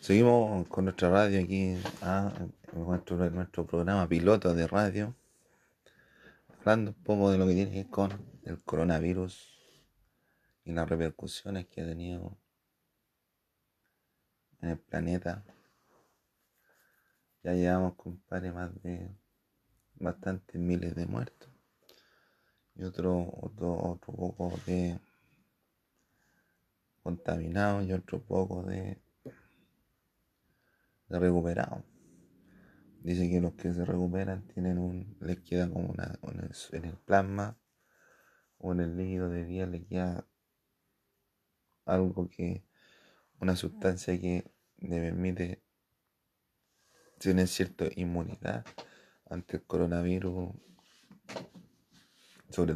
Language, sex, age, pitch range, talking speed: Spanish, male, 30-49, 85-95 Hz, 110 wpm